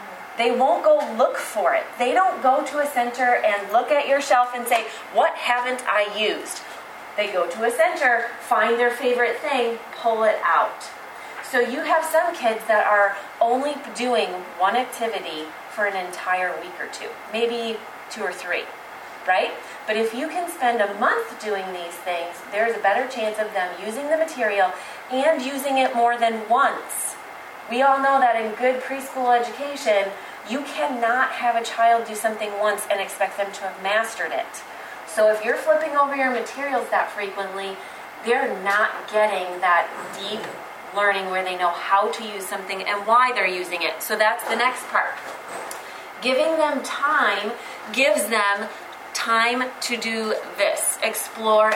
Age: 30-49